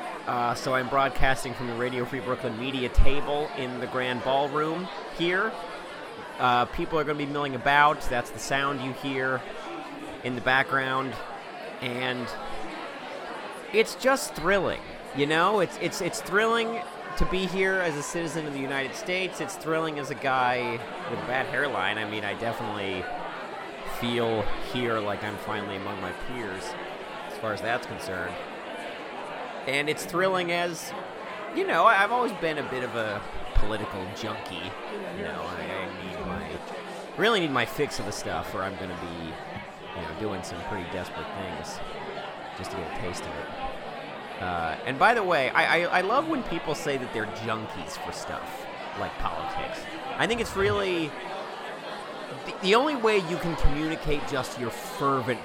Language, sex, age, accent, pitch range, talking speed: English, male, 40-59, American, 115-160 Hz, 170 wpm